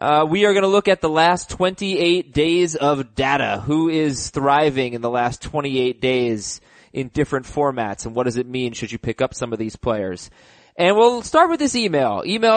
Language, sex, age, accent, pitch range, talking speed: English, male, 20-39, American, 130-180 Hz, 210 wpm